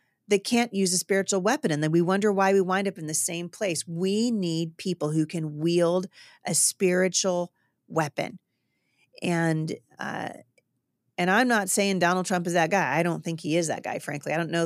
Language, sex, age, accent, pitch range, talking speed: English, female, 40-59, American, 155-195 Hz, 200 wpm